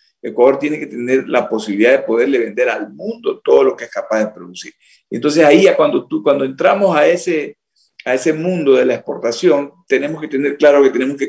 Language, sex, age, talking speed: Spanish, male, 50-69, 205 wpm